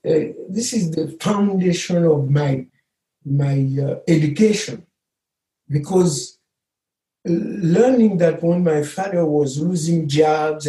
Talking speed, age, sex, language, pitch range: 105 wpm, 60-79, male, English, 155-205 Hz